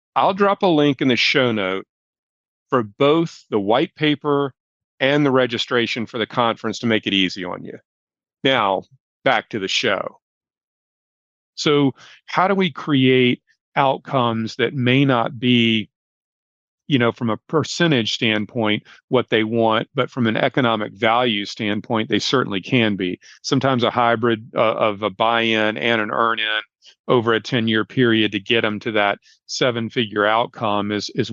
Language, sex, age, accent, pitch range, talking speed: English, male, 40-59, American, 110-130 Hz, 155 wpm